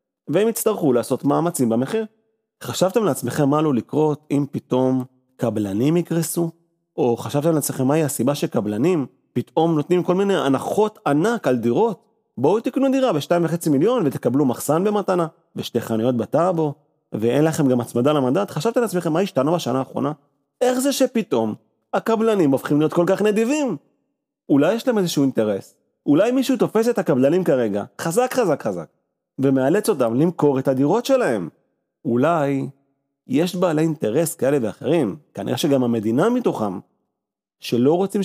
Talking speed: 130 wpm